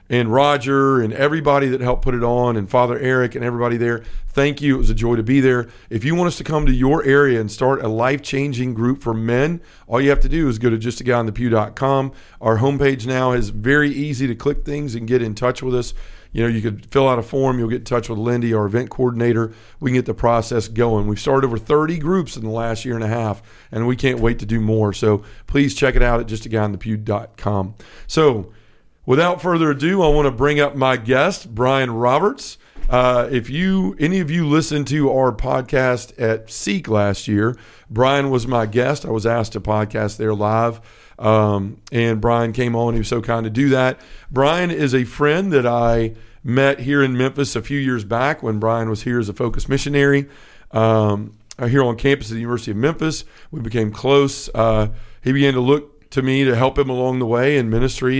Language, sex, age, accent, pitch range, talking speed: English, male, 40-59, American, 110-135 Hz, 225 wpm